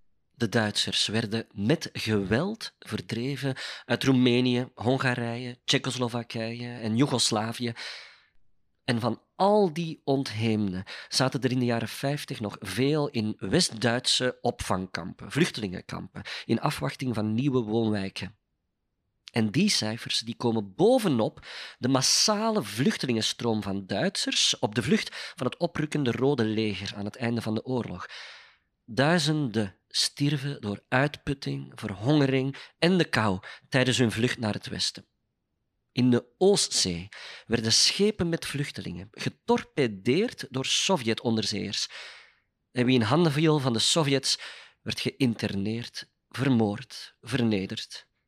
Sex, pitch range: male, 110-135 Hz